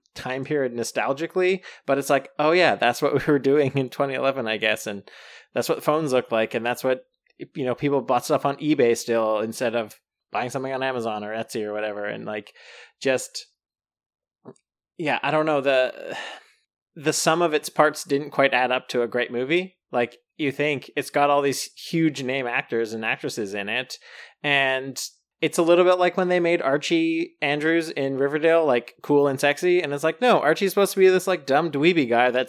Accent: American